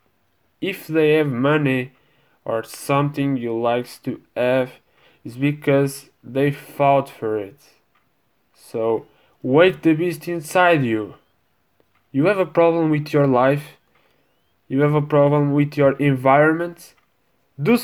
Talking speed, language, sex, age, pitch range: 125 wpm, French, male, 10-29, 135-165 Hz